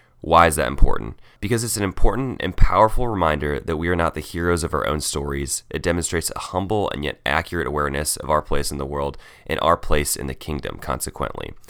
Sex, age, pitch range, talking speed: male, 20-39, 70-90 Hz, 215 wpm